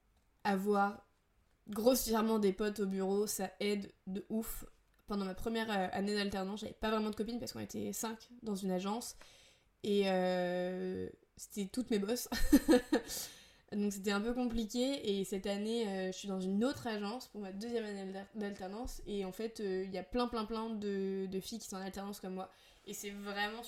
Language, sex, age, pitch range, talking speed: French, female, 20-39, 185-210 Hz, 190 wpm